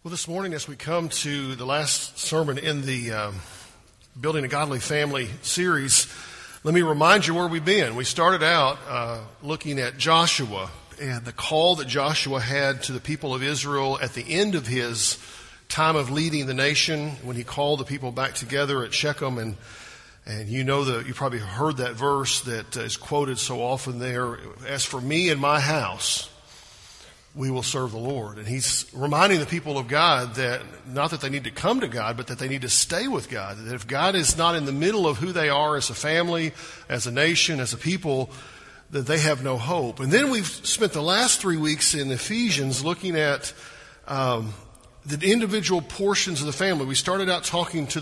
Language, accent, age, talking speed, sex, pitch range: English, American, 50-69, 205 wpm, male, 125-155 Hz